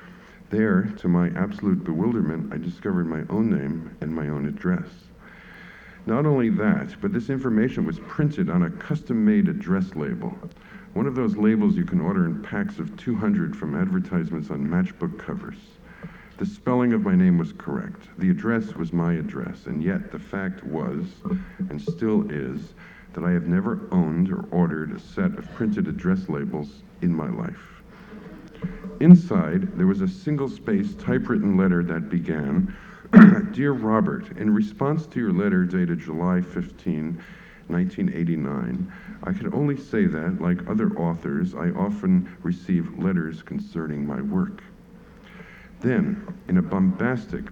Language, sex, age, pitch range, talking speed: English, male, 60-79, 175-200 Hz, 150 wpm